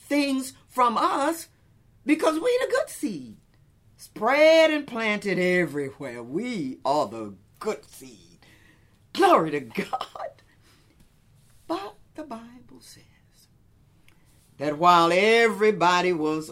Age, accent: 40-59, American